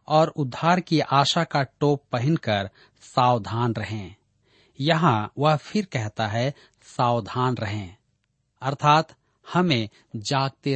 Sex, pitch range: male, 115-160 Hz